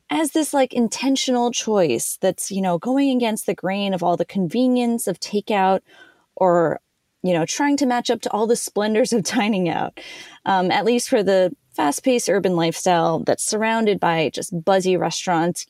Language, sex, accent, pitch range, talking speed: English, female, American, 185-250 Hz, 175 wpm